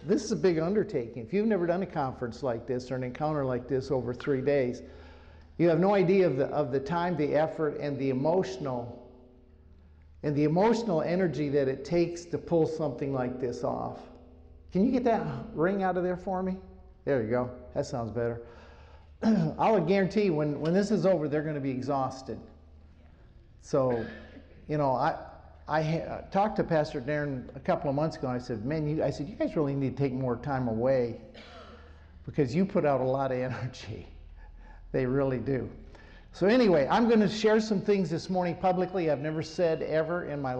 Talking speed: 200 wpm